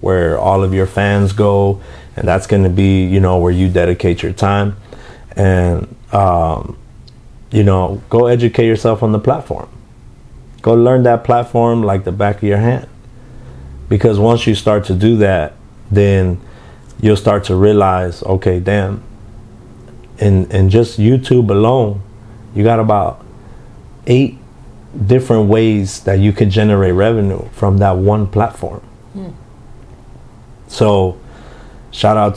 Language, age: English, 30-49